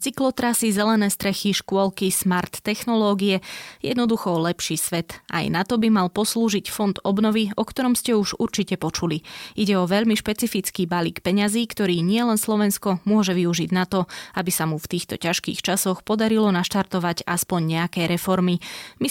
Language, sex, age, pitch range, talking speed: Slovak, female, 20-39, 180-225 Hz, 155 wpm